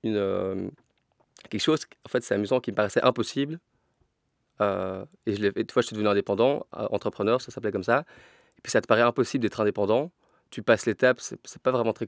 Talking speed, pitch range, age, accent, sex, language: 200 wpm, 105-120 Hz, 30-49, French, male, French